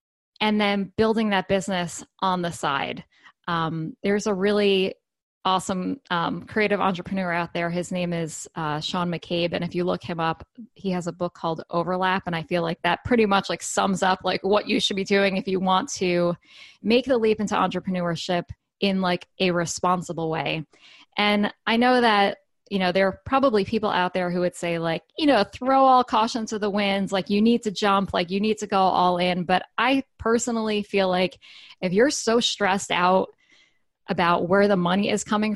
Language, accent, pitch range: English, American, 180-220 Hz